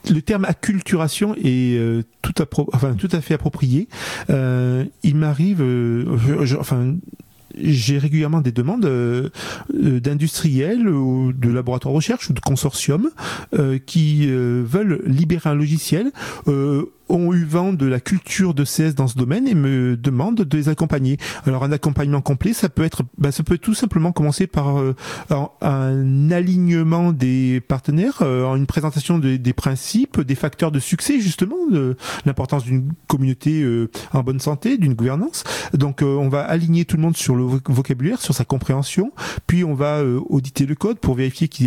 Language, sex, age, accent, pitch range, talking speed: French, male, 40-59, French, 130-170 Hz, 180 wpm